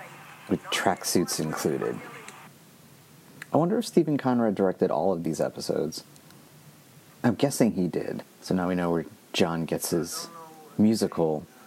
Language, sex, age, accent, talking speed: English, male, 30-49, American, 135 wpm